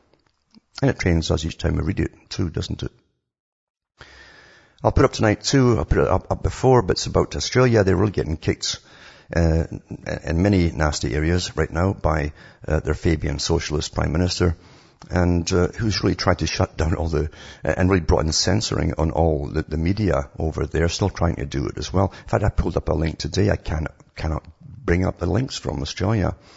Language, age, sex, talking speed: English, 60-79, male, 205 wpm